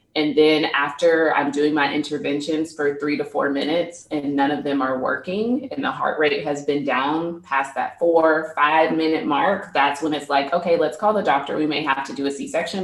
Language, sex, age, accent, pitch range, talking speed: English, female, 20-39, American, 150-215 Hz, 220 wpm